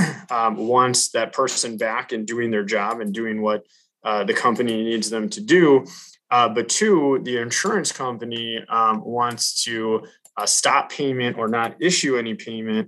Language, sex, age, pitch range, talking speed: English, male, 20-39, 110-130 Hz, 170 wpm